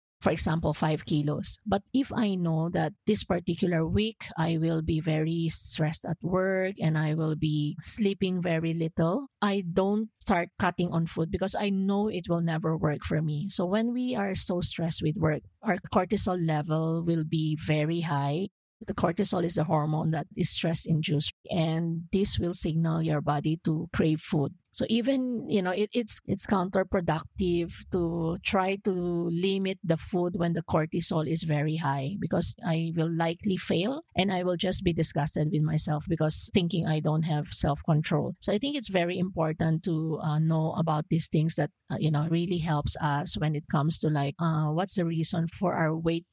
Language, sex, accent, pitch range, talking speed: English, female, Filipino, 155-185 Hz, 185 wpm